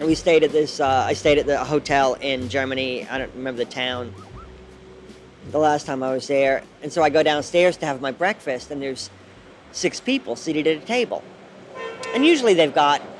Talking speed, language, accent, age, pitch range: 200 wpm, English, American, 40-59, 140-180 Hz